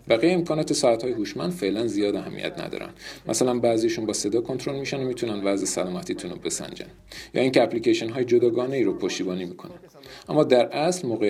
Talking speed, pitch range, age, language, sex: 175 wpm, 110-160 Hz, 40-59, Persian, male